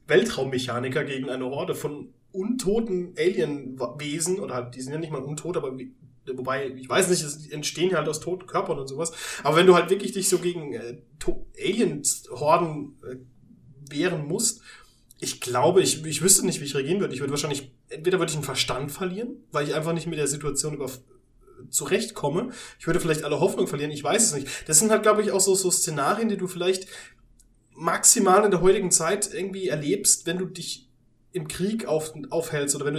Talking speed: 200 wpm